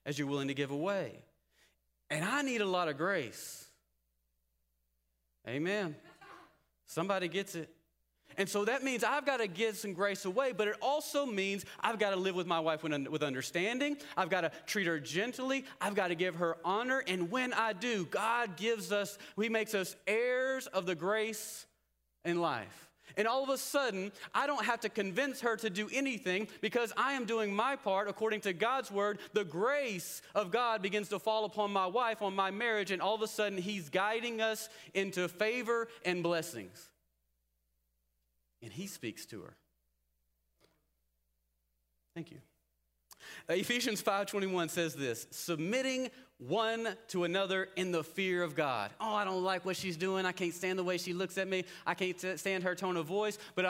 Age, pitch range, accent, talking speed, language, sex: 30-49, 160-220 Hz, American, 180 wpm, English, male